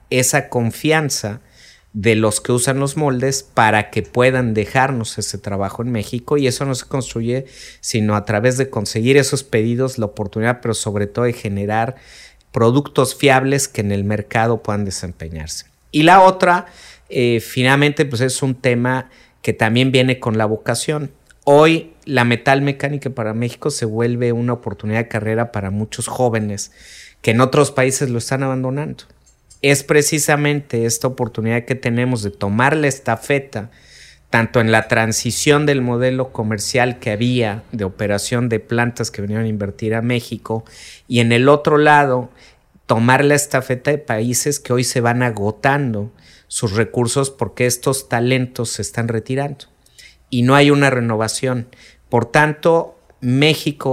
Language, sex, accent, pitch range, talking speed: Spanish, male, Mexican, 110-135 Hz, 155 wpm